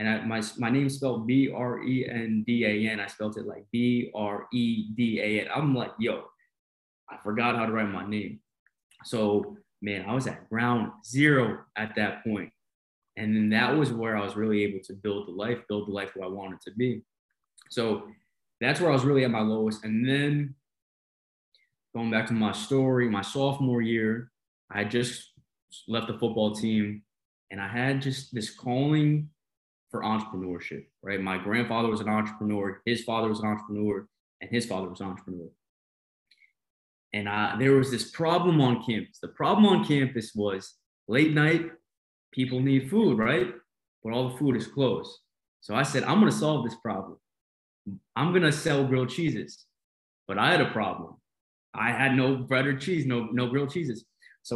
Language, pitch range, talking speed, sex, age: English, 105-130 Hz, 185 wpm, male, 20-39